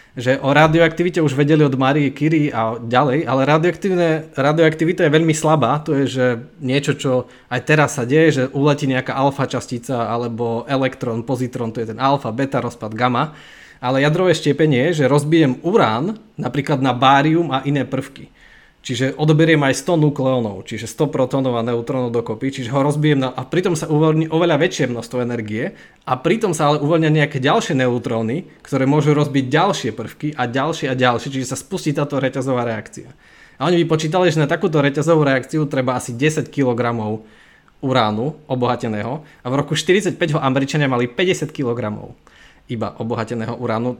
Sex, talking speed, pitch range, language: male, 165 wpm, 125-155 Hz, Slovak